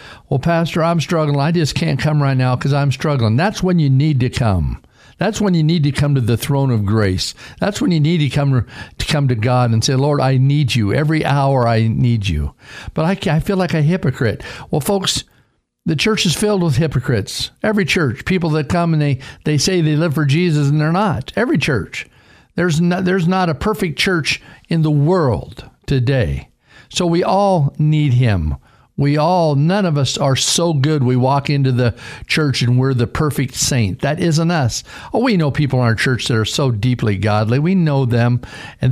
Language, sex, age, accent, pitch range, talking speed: English, male, 50-69, American, 120-160 Hz, 210 wpm